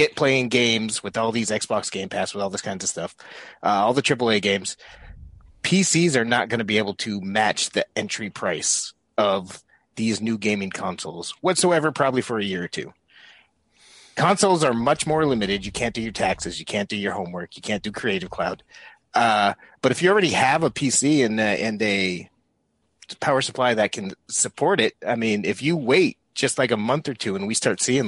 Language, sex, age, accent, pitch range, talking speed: English, male, 30-49, American, 105-135 Hz, 205 wpm